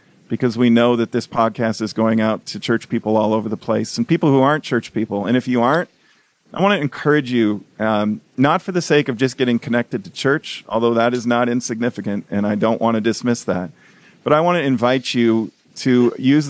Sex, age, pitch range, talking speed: male, 40-59, 105-125 Hz, 225 wpm